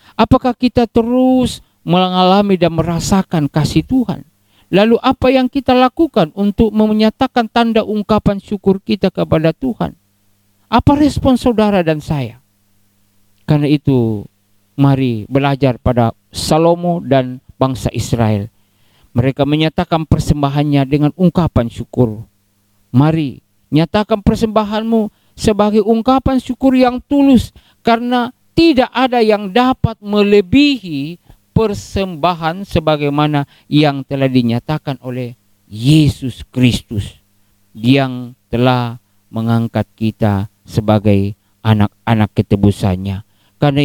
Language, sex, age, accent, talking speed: Indonesian, male, 50-69, native, 95 wpm